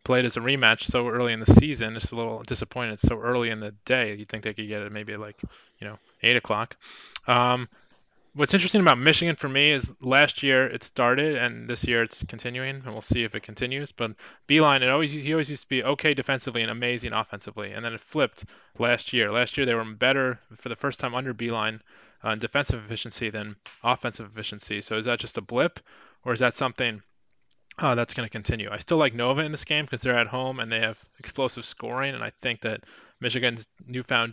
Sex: male